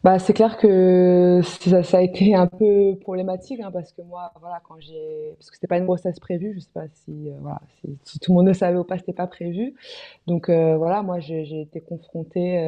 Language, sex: French, female